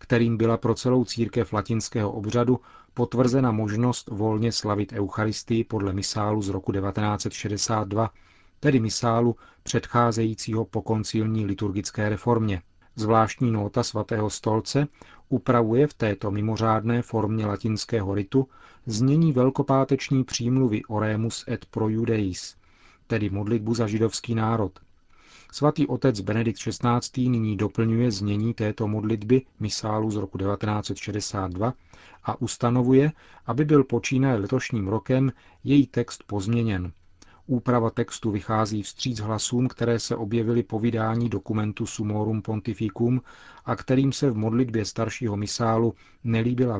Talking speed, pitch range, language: 115 wpm, 105-120 Hz, Czech